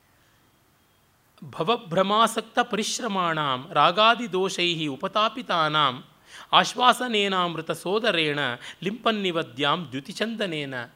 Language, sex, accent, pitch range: Kannada, male, native, 145-200 Hz